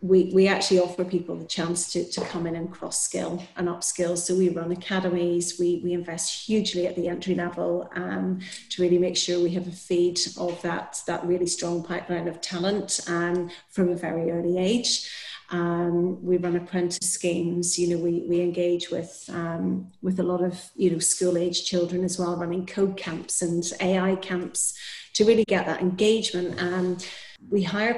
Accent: British